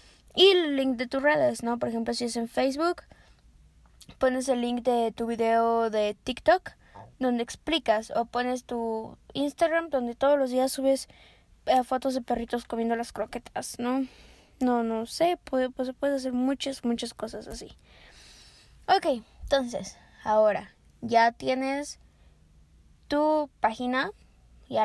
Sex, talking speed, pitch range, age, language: female, 140 wpm, 230-285 Hz, 20-39, Spanish